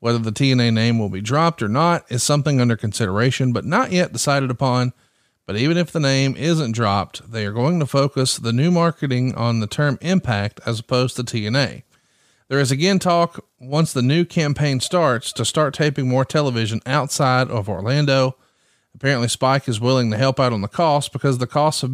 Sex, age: male, 40-59